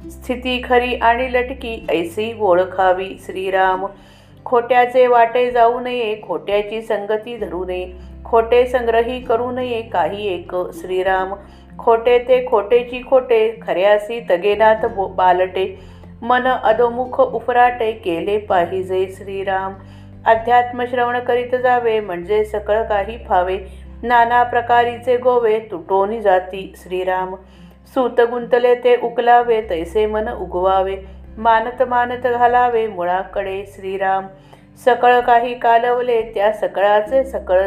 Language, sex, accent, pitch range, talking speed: Marathi, female, native, 190-245 Hz, 60 wpm